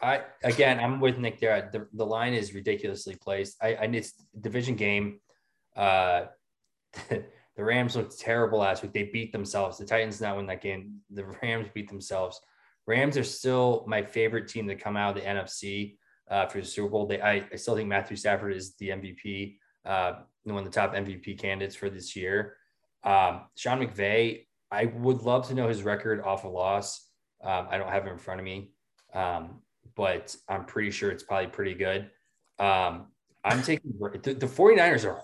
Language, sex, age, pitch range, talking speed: English, male, 20-39, 100-130 Hz, 190 wpm